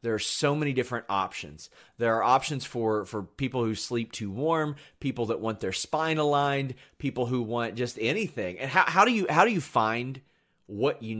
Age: 30-49